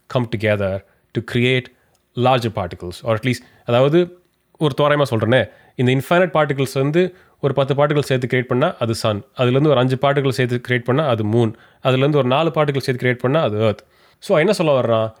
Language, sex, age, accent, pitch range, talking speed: Tamil, male, 30-49, native, 115-145 Hz, 195 wpm